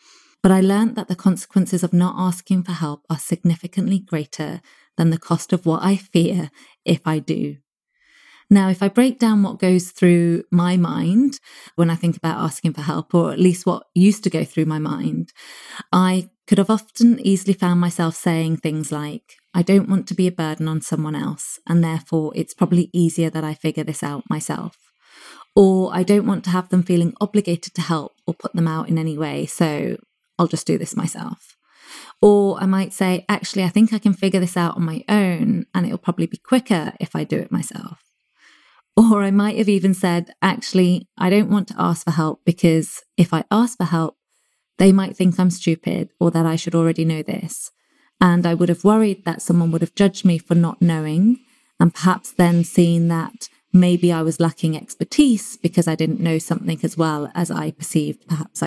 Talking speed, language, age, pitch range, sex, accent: 205 wpm, English, 20-39, 165-195 Hz, female, British